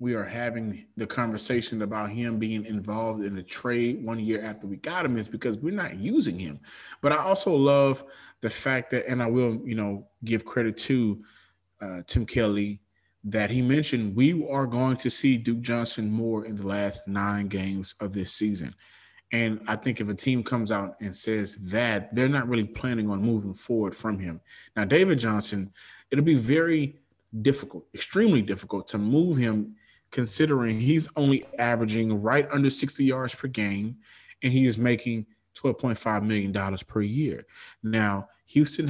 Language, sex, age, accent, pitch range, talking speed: English, male, 20-39, American, 105-125 Hz, 175 wpm